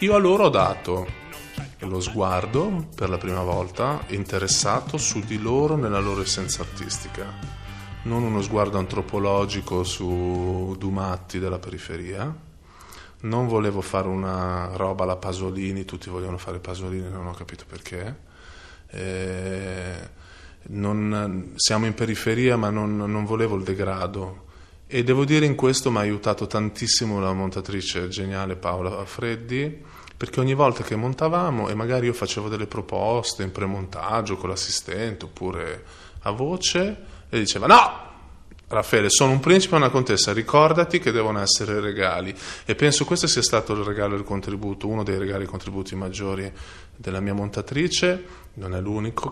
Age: 20-39